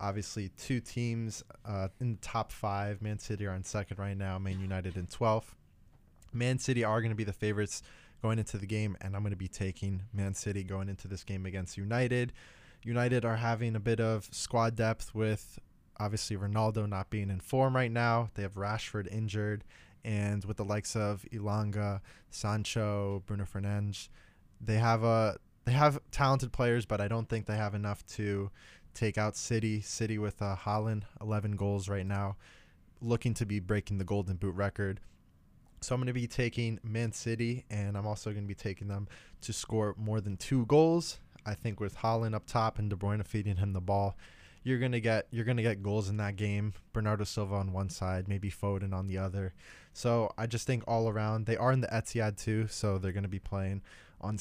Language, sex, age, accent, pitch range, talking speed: English, male, 20-39, American, 100-115 Hz, 200 wpm